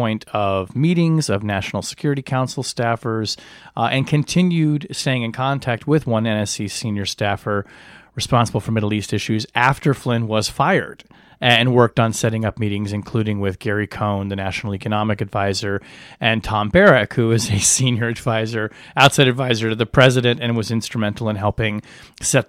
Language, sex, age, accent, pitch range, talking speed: English, male, 30-49, American, 110-140 Hz, 160 wpm